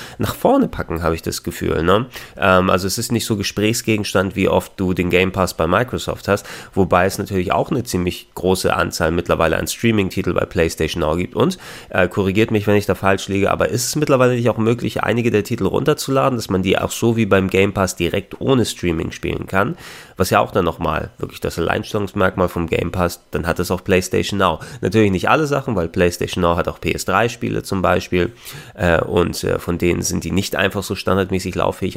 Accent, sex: German, male